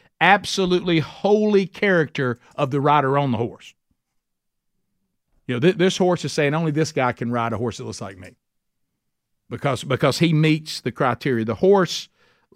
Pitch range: 125-185 Hz